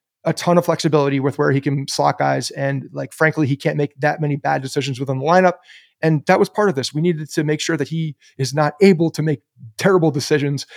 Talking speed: 240 wpm